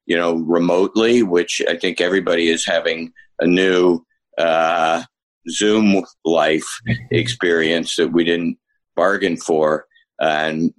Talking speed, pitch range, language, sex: 120 wpm, 85-105 Hz, English, male